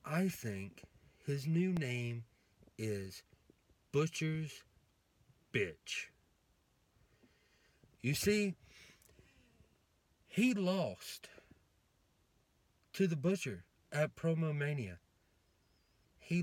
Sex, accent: male, American